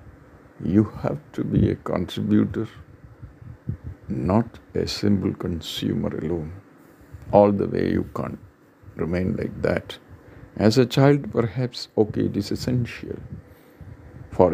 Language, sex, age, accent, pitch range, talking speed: English, male, 50-69, Indian, 95-115 Hz, 115 wpm